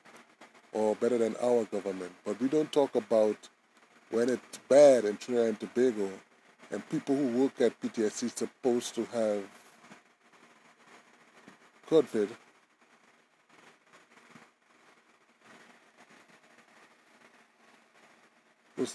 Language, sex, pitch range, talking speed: English, male, 105-125 Hz, 90 wpm